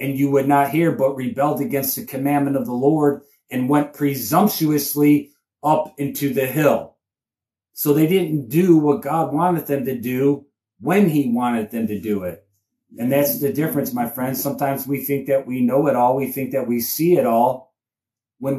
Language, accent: English, American